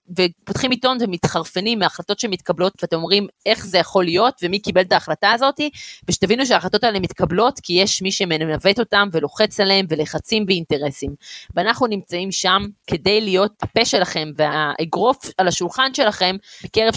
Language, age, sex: Hebrew, 30-49, female